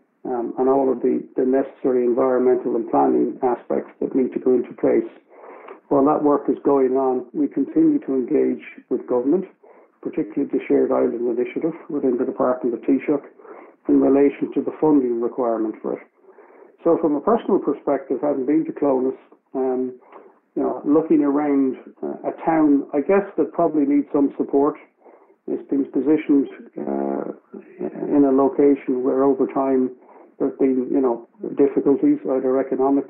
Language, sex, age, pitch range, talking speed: English, male, 60-79, 130-155 Hz, 160 wpm